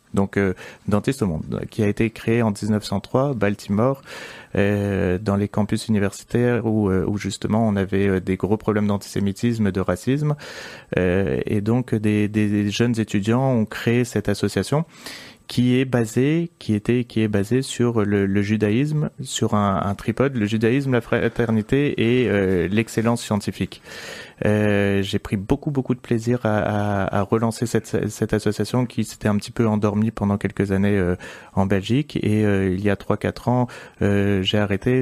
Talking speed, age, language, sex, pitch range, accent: 175 wpm, 30-49, French, male, 100-120 Hz, French